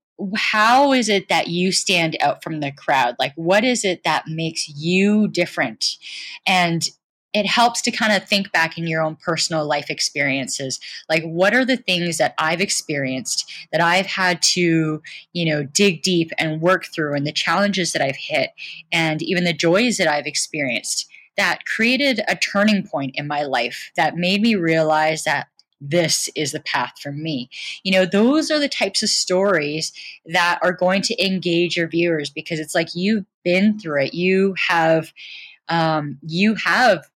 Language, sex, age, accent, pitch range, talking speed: English, female, 10-29, American, 155-195 Hz, 180 wpm